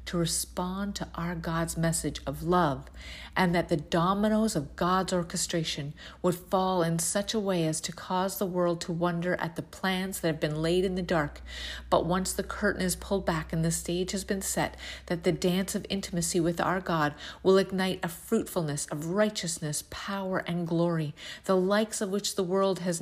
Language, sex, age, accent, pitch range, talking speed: English, female, 40-59, American, 160-185 Hz, 195 wpm